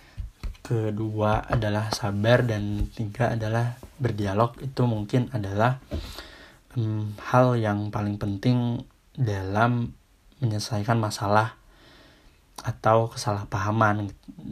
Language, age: Indonesian, 20-39